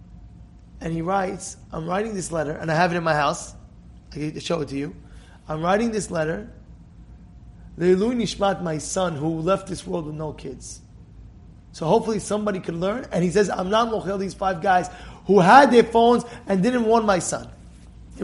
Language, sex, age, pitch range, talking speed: English, male, 20-39, 160-225 Hz, 195 wpm